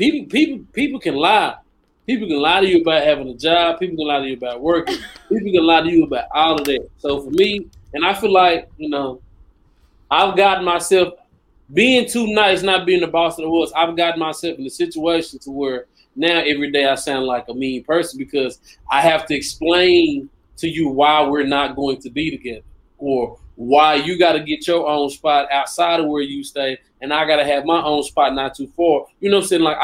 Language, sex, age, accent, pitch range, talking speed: English, male, 20-39, American, 150-230 Hz, 230 wpm